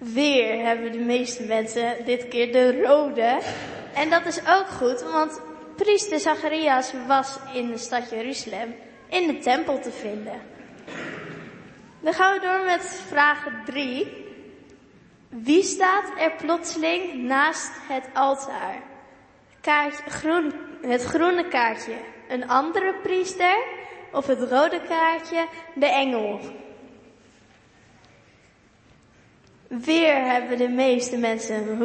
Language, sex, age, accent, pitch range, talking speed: Dutch, female, 20-39, Dutch, 245-335 Hz, 110 wpm